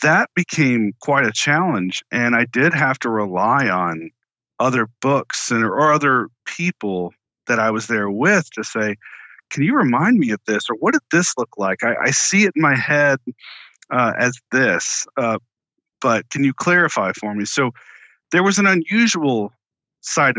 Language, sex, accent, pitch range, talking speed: English, male, American, 110-150 Hz, 175 wpm